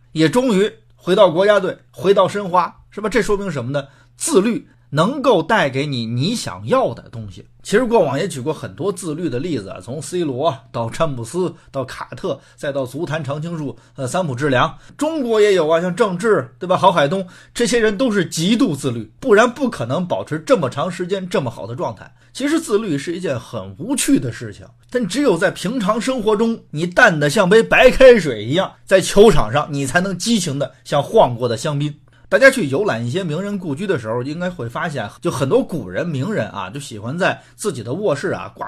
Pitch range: 130-205 Hz